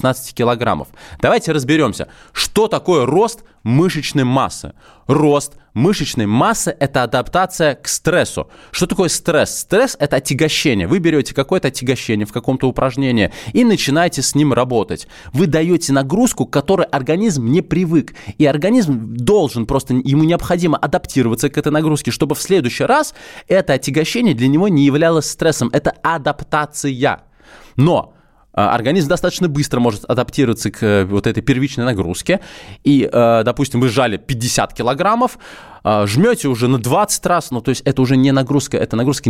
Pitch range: 120-155 Hz